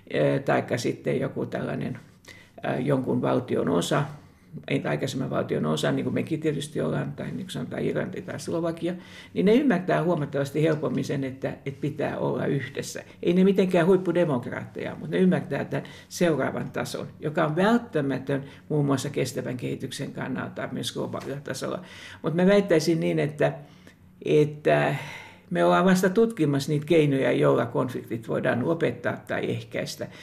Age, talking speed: 60-79, 140 wpm